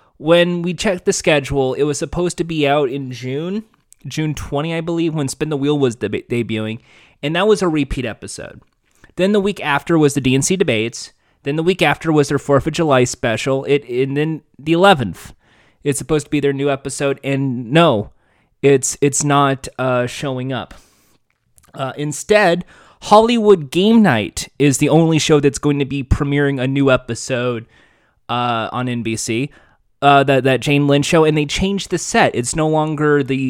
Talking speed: 185 wpm